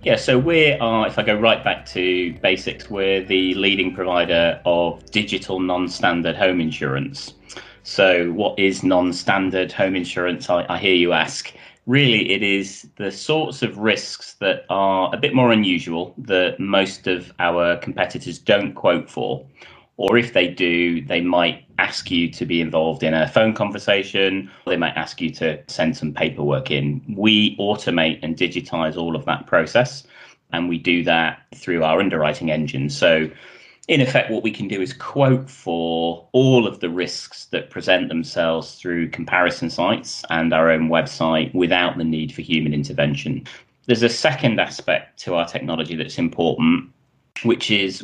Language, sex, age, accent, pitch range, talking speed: English, male, 30-49, British, 85-105 Hz, 165 wpm